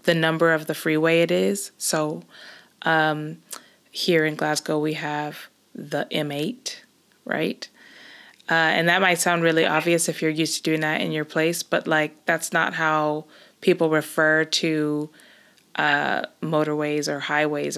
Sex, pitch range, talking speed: female, 150-170 Hz, 150 wpm